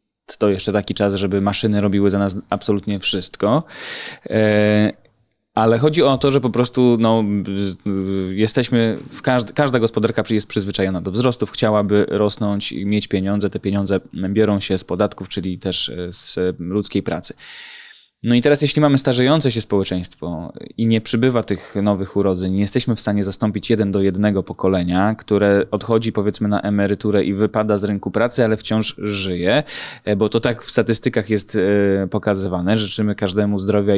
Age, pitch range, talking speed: 20-39, 100-110 Hz, 160 wpm